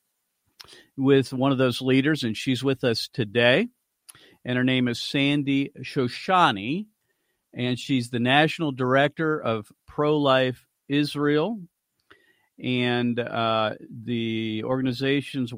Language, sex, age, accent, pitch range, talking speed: English, male, 50-69, American, 120-155 Hz, 110 wpm